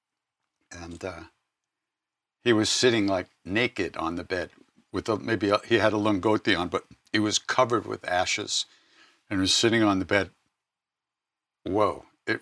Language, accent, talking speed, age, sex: English, American, 150 wpm, 60-79, male